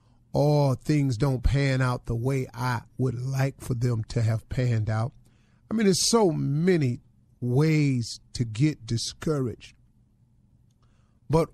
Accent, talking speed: American, 135 wpm